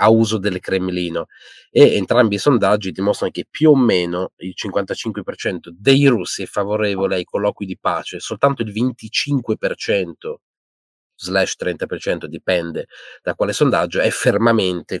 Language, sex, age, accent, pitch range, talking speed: Italian, male, 30-49, native, 90-115 Hz, 135 wpm